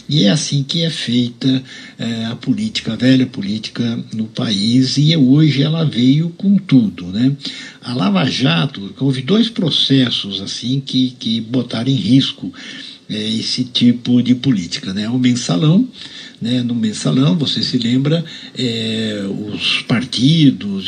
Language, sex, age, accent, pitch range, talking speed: Portuguese, male, 60-79, Brazilian, 120-160 Hz, 145 wpm